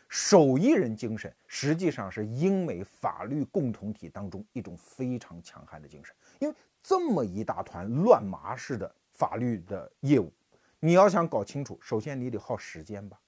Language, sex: Chinese, male